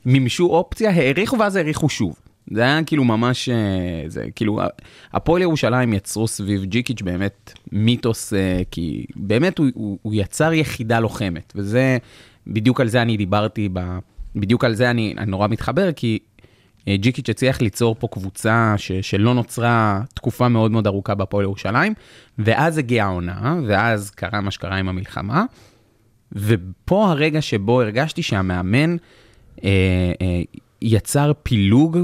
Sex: male